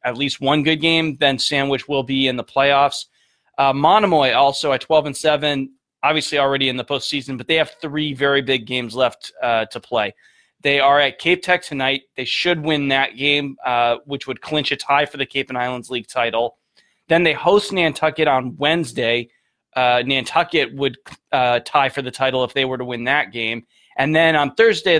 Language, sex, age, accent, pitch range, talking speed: English, male, 20-39, American, 130-155 Hz, 200 wpm